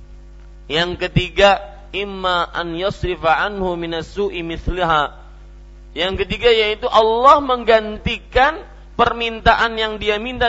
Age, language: 40-59, Malay